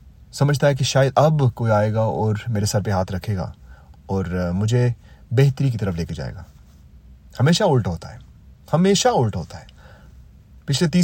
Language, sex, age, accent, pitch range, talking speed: Romanian, male, 30-49, Indian, 100-135 Hz, 135 wpm